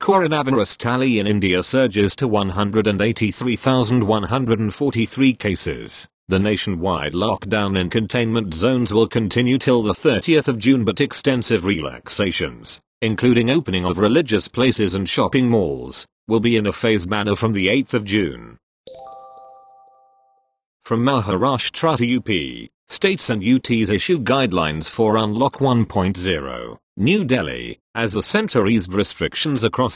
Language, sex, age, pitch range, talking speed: English, male, 40-59, 105-130 Hz, 120 wpm